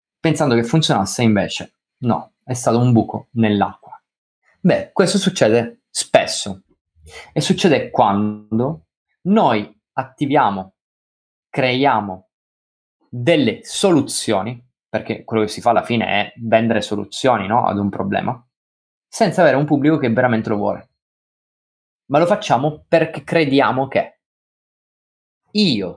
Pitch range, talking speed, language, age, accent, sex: 100-160 Hz, 115 wpm, Italian, 20-39, native, male